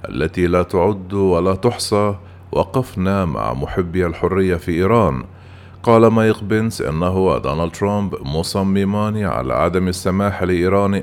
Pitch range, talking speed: 95-110 Hz, 120 wpm